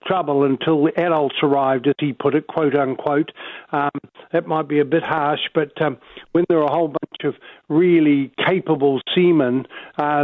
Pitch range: 145-165 Hz